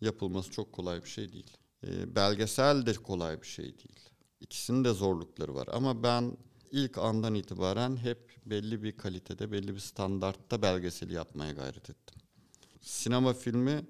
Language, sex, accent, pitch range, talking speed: Turkish, male, native, 95-120 Hz, 150 wpm